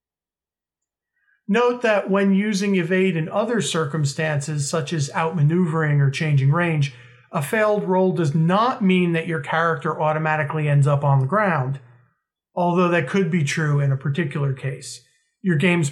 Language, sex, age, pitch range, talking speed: English, male, 40-59, 140-195 Hz, 150 wpm